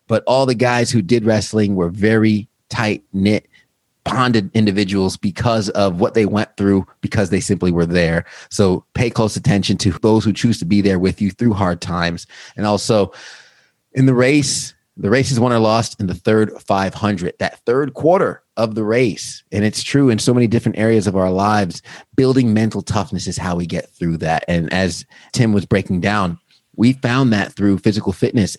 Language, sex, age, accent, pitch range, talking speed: English, male, 30-49, American, 95-115 Hz, 190 wpm